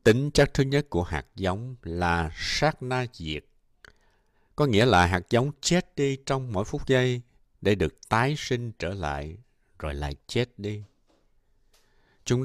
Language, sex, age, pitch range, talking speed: Vietnamese, male, 60-79, 90-130 Hz, 160 wpm